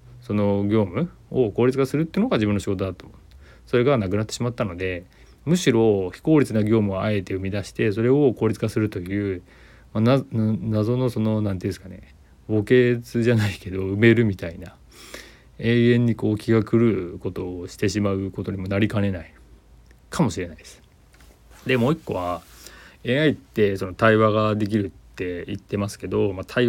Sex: male